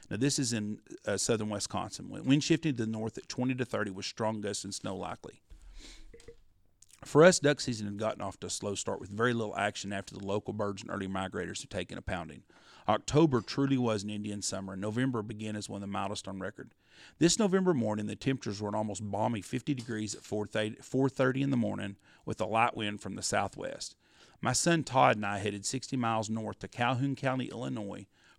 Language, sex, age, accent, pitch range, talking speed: English, male, 40-59, American, 105-130 Hz, 210 wpm